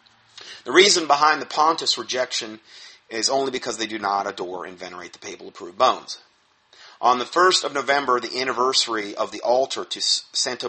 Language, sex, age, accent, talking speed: English, male, 40-59, American, 170 wpm